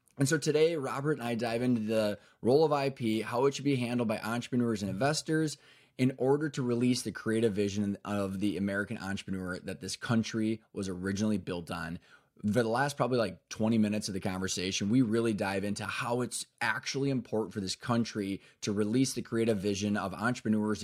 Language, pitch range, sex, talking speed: English, 105-125 Hz, male, 195 wpm